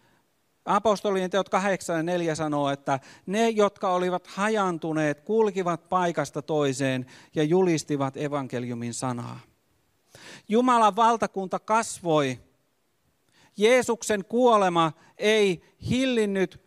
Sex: male